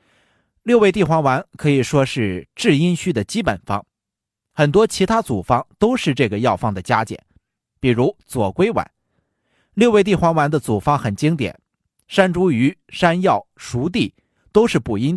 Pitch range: 120-185 Hz